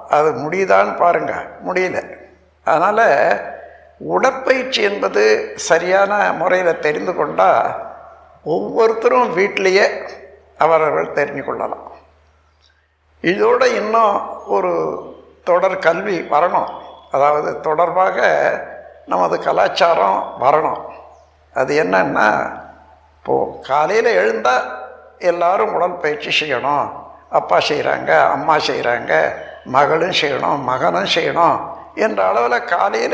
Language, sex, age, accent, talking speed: Tamil, male, 60-79, native, 85 wpm